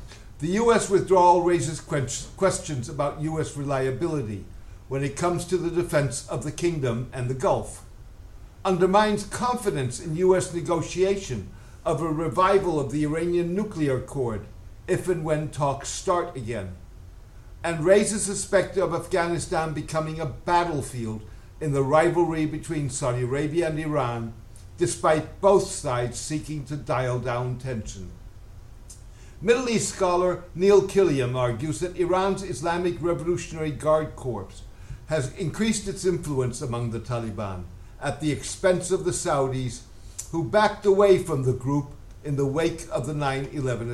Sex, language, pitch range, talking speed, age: male, English, 120-175 Hz, 140 wpm, 60-79